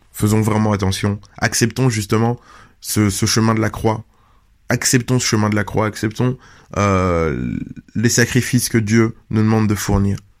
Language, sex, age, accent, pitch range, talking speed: French, male, 20-39, French, 110-130 Hz, 155 wpm